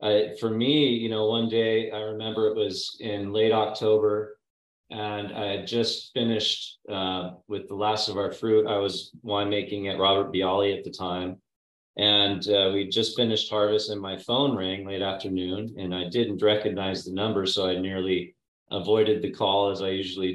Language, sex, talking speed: English, male, 185 wpm